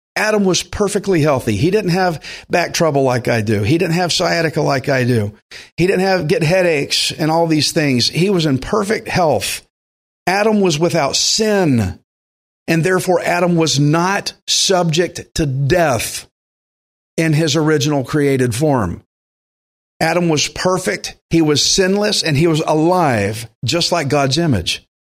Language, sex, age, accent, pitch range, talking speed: English, male, 50-69, American, 120-165 Hz, 155 wpm